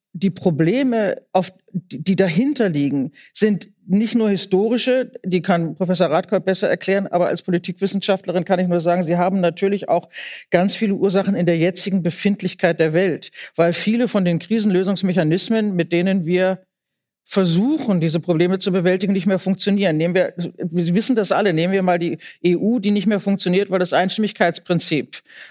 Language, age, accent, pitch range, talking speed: German, 50-69, German, 170-195 Hz, 160 wpm